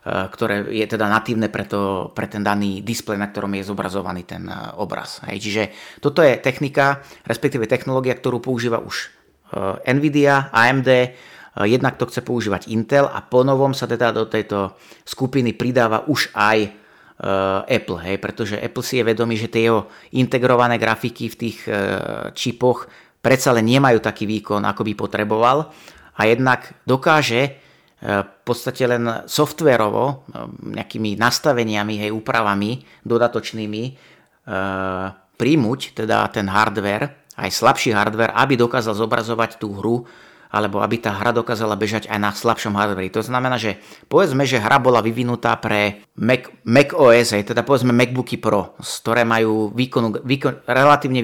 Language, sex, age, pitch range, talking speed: Slovak, male, 30-49, 105-125 Hz, 145 wpm